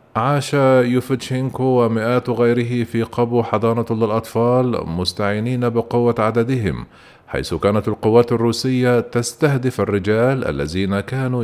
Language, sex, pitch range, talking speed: Arabic, male, 110-125 Hz, 100 wpm